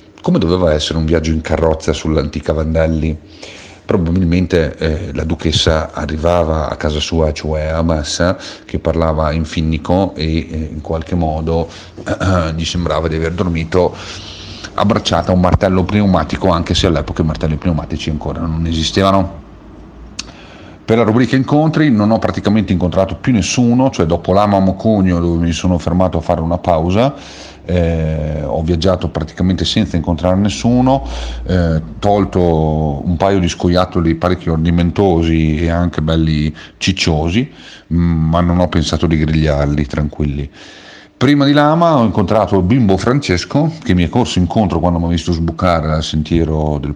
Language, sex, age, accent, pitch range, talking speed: Italian, male, 40-59, native, 80-95 Hz, 150 wpm